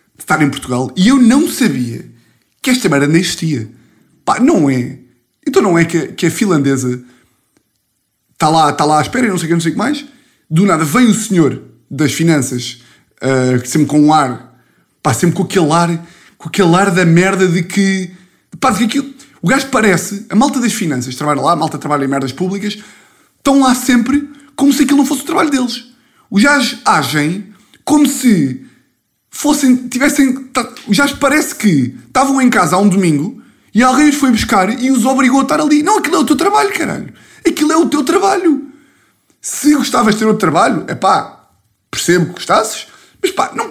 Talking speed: 190 wpm